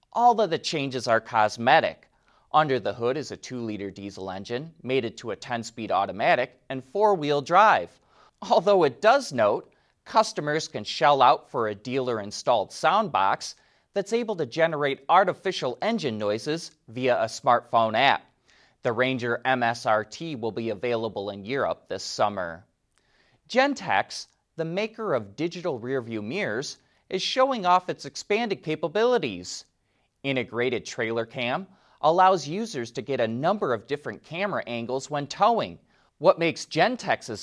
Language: English